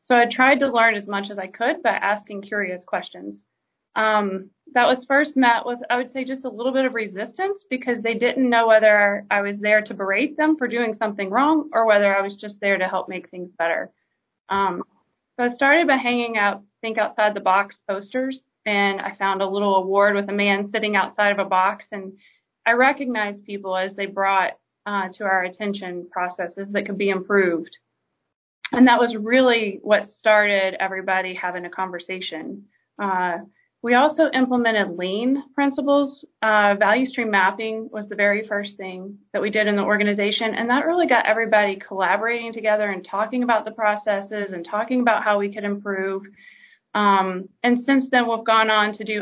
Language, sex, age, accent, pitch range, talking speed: English, female, 30-49, American, 195-235 Hz, 190 wpm